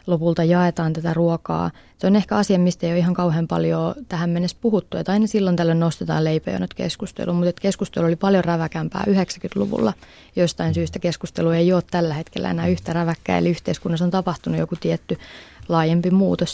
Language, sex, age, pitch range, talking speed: Finnish, female, 20-39, 165-185 Hz, 175 wpm